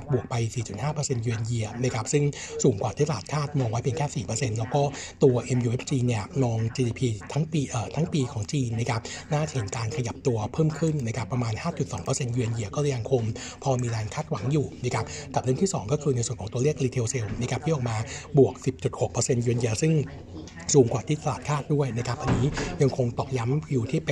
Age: 60-79